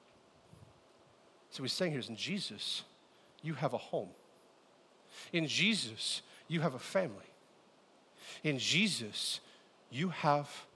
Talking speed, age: 125 wpm, 40-59